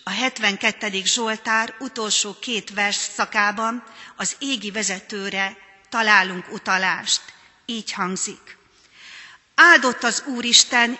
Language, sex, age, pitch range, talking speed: Hungarian, female, 40-59, 190-235 Hz, 95 wpm